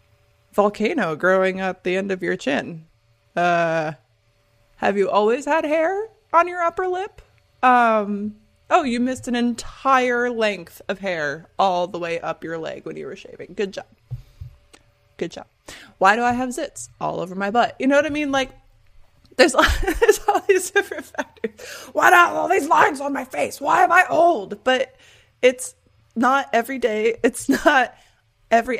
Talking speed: 170 wpm